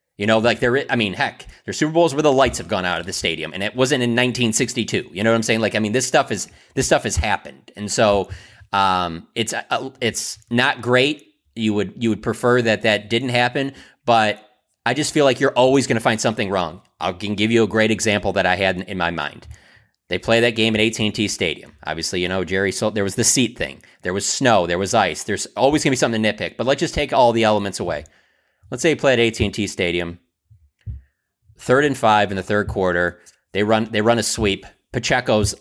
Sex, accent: male, American